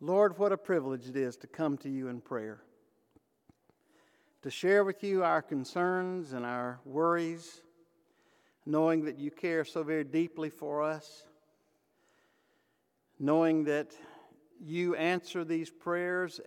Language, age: English, 60-79